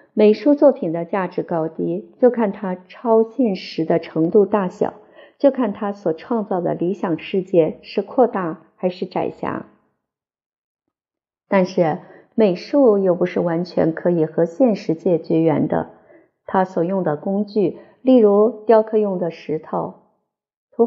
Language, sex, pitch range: Chinese, female, 170-215 Hz